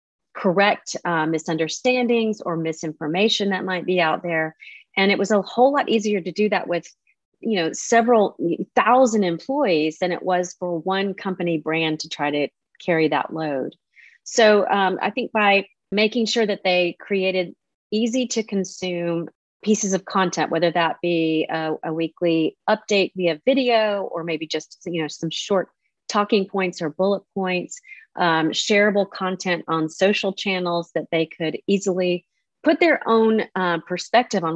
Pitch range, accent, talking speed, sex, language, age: 160-200 Hz, American, 160 wpm, female, English, 30-49